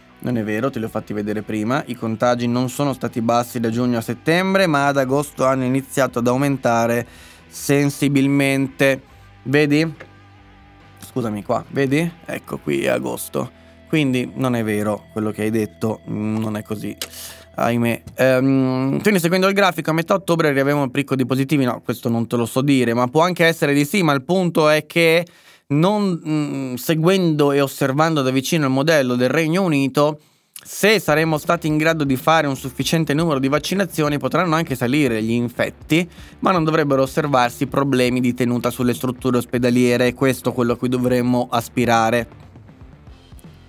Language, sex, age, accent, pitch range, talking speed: Italian, male, 20-39, native, 120-155 Hz, 170 wpm